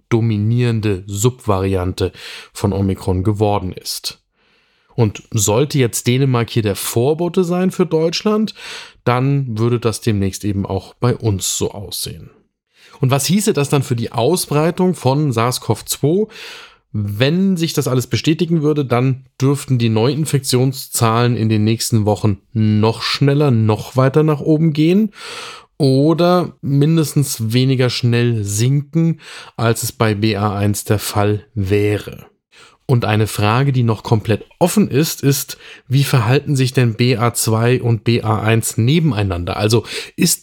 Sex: male